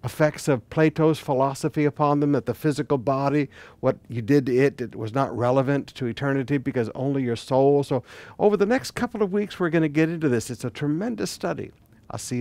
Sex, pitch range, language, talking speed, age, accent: male, 115-160 Hz, English, 210 wpm, 60-79, American